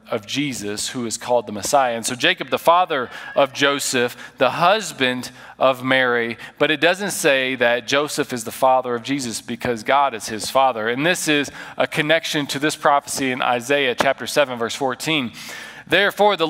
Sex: male